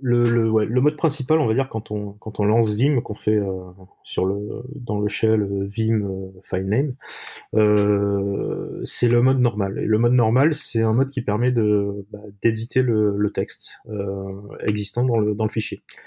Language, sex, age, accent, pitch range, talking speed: French, male, 30-49, French, 105-120 Hz, 200 wpm